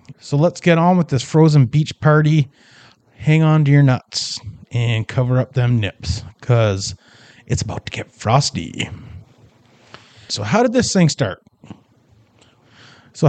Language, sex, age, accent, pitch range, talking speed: English, male, 30-49, American, 120-155 Hz, 145 wpm